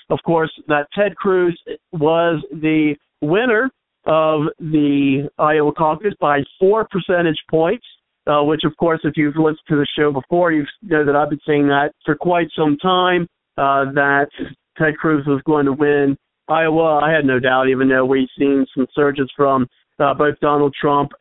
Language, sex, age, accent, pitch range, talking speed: English, male, 50-69, American, 145-165 Hz, 175 wpm